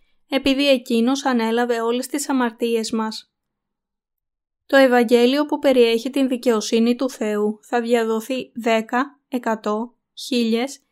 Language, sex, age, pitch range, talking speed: Greek, female, 20-39, 230-265 Hz, 110 wpm